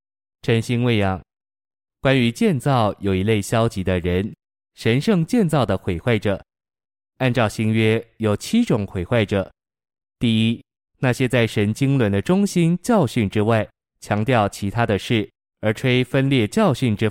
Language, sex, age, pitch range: Chinese, male, 20-39, 100-125 Hz